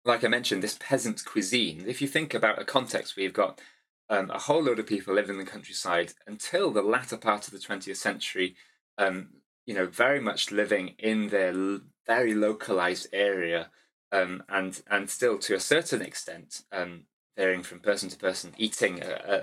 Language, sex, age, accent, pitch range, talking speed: English, male, 20-39, British, 95-110 Hz, 190 wpm